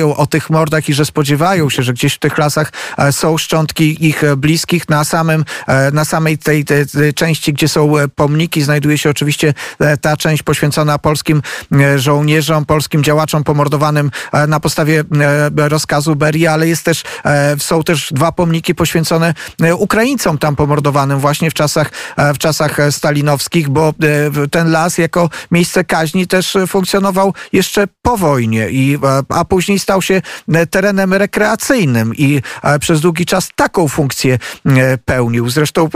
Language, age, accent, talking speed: Polish, 40-59, native, 135 wpm